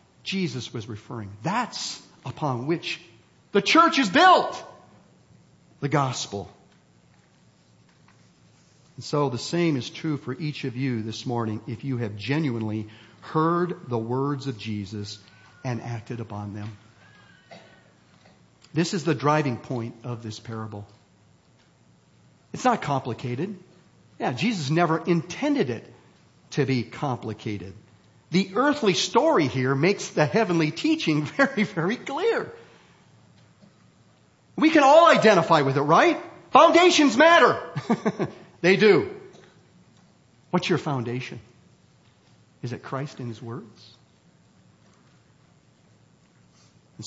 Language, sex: English, male